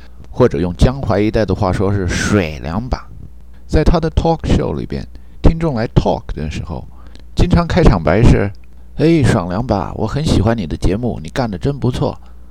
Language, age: Chinese, 50-69